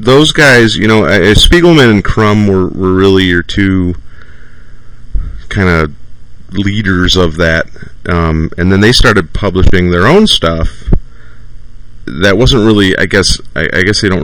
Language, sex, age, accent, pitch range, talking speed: English, male, 30-49, American, 80-100 Hz, 155 wpm